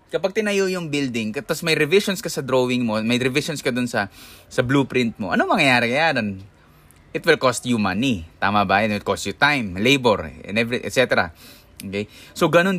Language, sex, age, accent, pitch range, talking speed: Filipino, male, 20-39, native, 95-140 Hz, 185 wpm